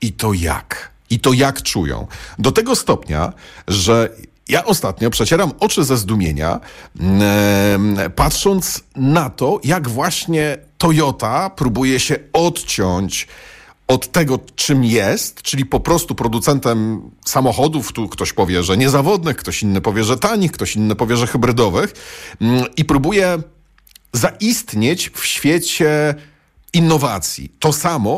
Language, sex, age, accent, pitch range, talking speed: Polish, male, 40-59, native, 105-150 Hz, 125 wpm